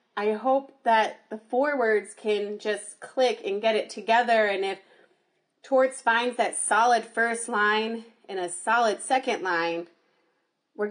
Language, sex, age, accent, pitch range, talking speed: English, female, 30-49, American, 205-240 Hz, 145 wpm